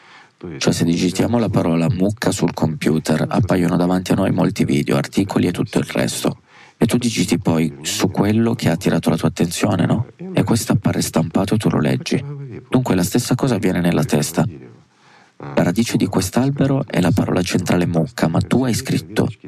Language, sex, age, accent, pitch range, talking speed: Italian, male, 30-49, native, 80-115 Hz, 185 wpm